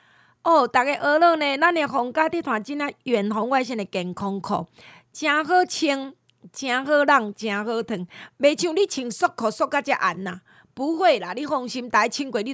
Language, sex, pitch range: Chinese, female, 210-295 Hz